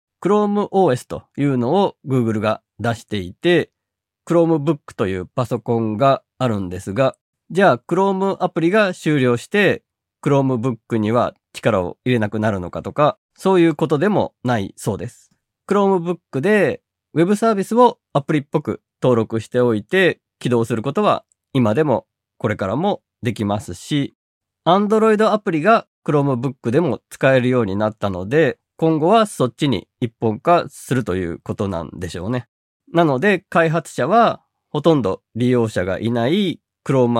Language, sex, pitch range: Japanese, male, 110-165 Hz